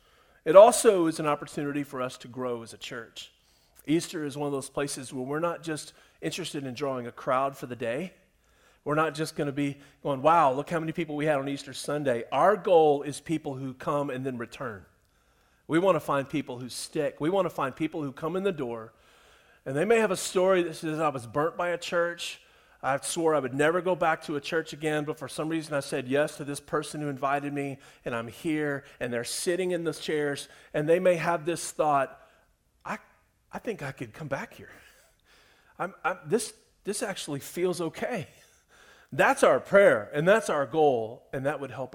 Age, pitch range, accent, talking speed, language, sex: 40-59, 140-180 Hz, American, 215 wpm, English, male